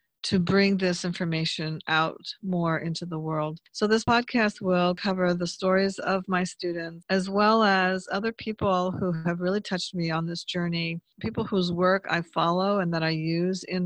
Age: 50-69